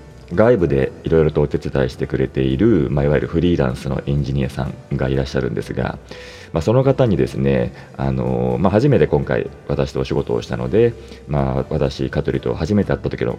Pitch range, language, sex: 70-90 Hz, Japanese, male